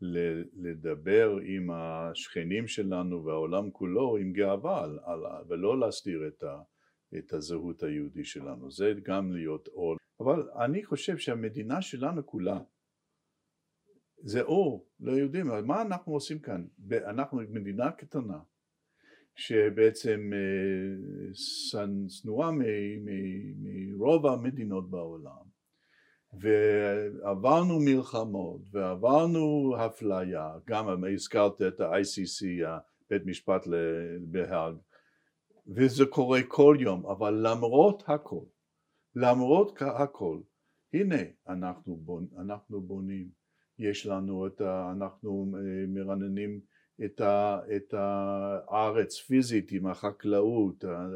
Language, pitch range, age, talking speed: Hebrew, 95-125 Hz, 60-79, 95 wpm